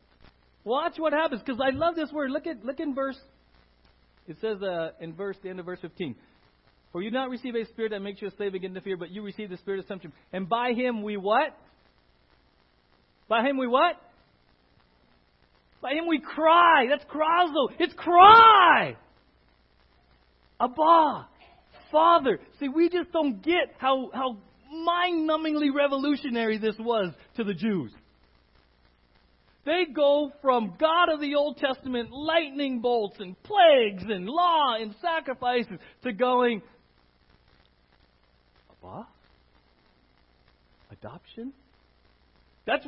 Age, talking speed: 40-59, 140 wpm